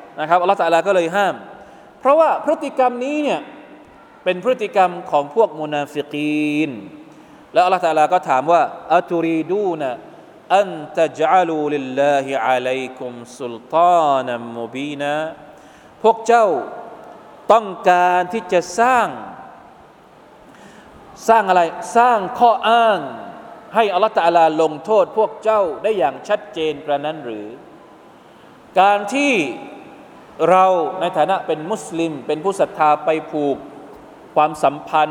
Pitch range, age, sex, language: 155-215 Hz, 20-39, male, Thai